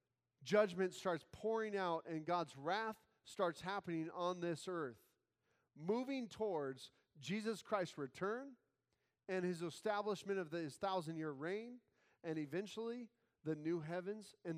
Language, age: English, 40-59